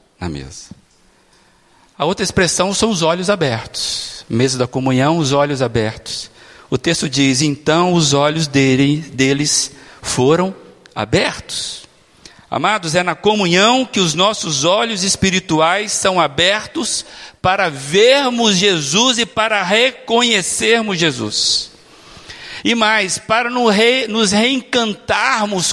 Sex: male